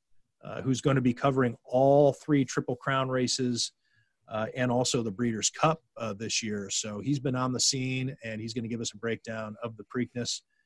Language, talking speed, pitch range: English, 210 wpm, 115-150 Hz